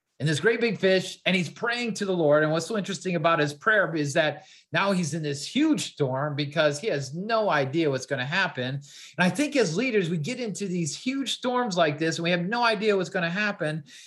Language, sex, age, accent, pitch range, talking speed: English, male, 30-49, American, 150-205 Hz, 245 wpm